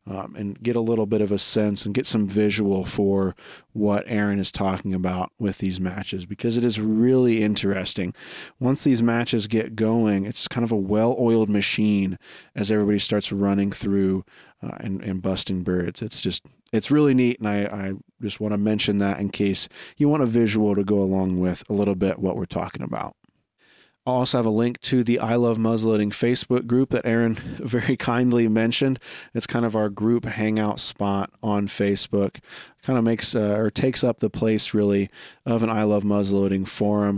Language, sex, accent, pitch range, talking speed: English, male, American, 100-115 Hz, 200 wpm